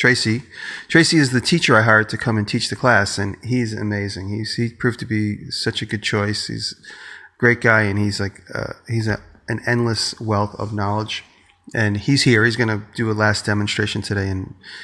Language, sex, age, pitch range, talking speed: English, male, 30-49, 100-115 Hz, 210 wpm